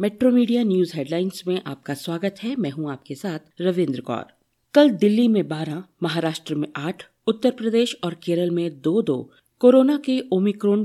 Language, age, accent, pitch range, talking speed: Hindi, 50-69, native, 155-215 Hz, 170 wpm